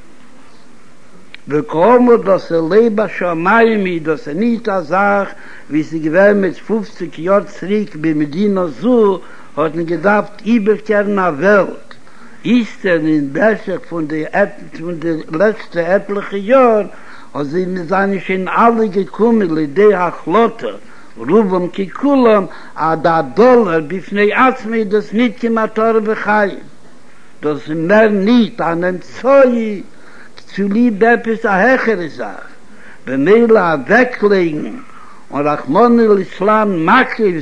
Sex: male